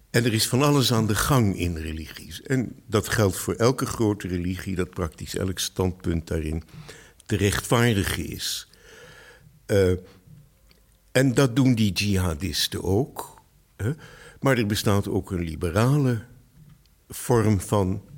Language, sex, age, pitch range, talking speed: Dutch, male, 60-79, 95-130 Hz, 135 wpm